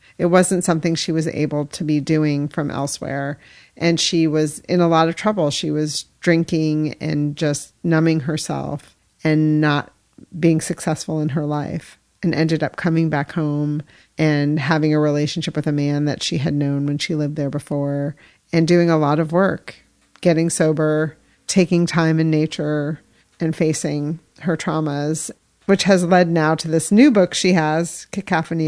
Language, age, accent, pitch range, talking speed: English, 40-59, American, 150-175 Hz, 170 wpm